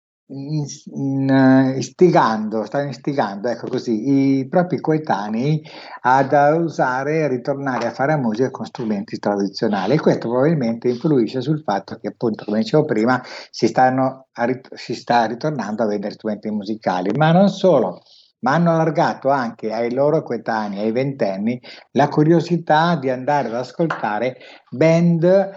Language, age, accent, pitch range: Italian, 60-79, native, 115-150 Hz